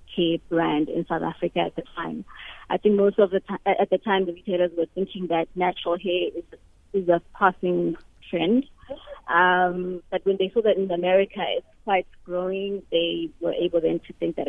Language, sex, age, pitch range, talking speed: English, female, 20-39, 170-195 Hz, 200 wpm